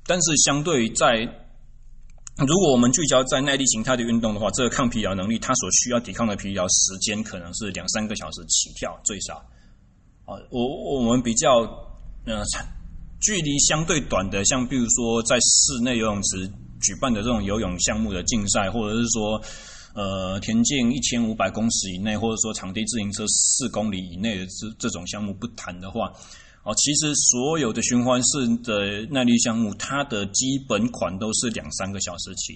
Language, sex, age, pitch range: Chinese, male, 20-39, 95-120 Hz